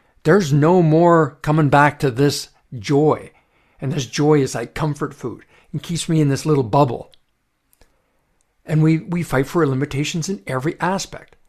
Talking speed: 160 wpm